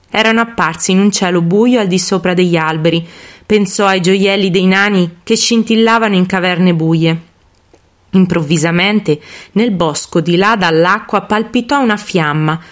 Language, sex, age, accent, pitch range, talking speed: Italian, female, 20-39, native, 170-225 Hz, 140 wpm